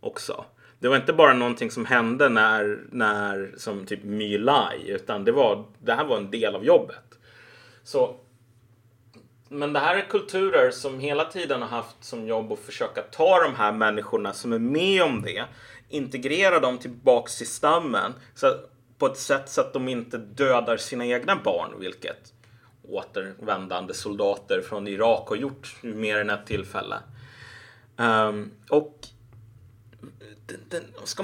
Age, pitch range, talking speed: 30-49, 110-160 Hz, 150 wpm